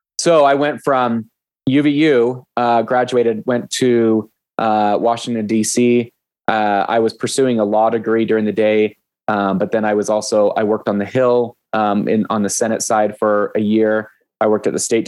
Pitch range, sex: 105-120 Hz, male